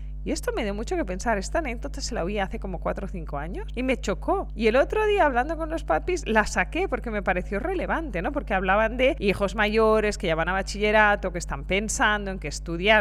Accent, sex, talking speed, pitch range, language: Spanish, female, 240 wpm, 180-260 Hz, Spanish